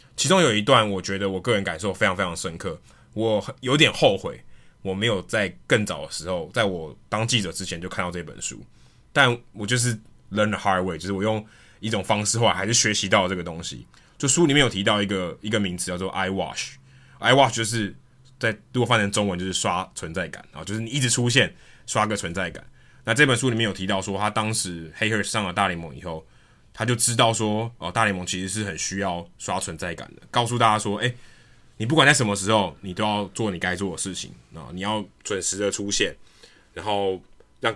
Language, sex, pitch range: Chinese, male, 95-115 Hz